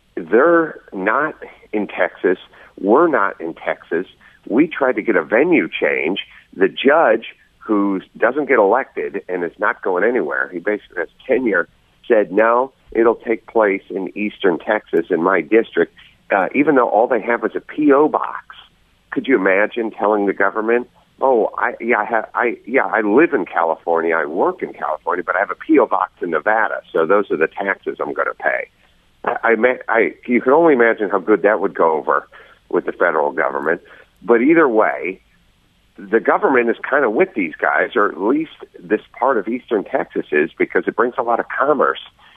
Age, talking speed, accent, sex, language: 50-69, 185 wpm, American, male, English